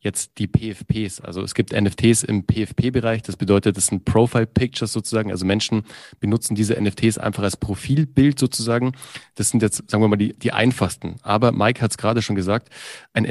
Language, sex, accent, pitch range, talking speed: German, male, German, 105-125 Hz, 185 wpm